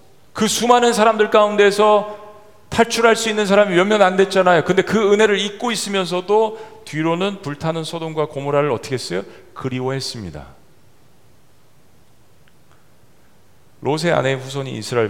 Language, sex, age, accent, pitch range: Korean, male, 40-59, native, 110-180 Hz